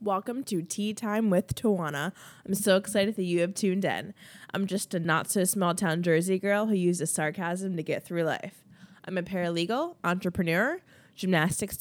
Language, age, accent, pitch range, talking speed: English, 20-39, American, 160-195 Hz, 165 wpm